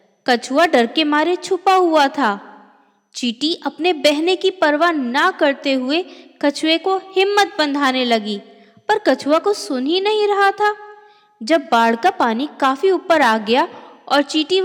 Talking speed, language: 155 wpm, Hindi